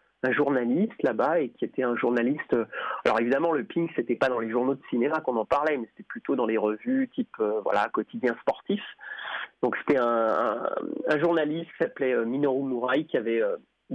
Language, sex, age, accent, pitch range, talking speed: French, male, 30-49, French, 125-160 Hz, 200 wpm